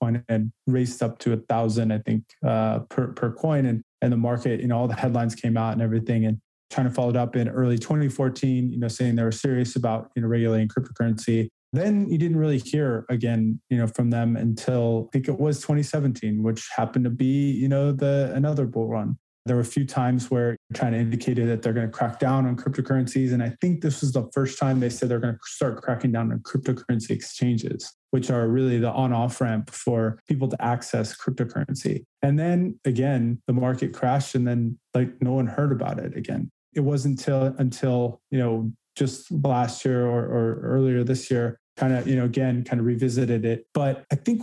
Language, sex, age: English, male, 20-39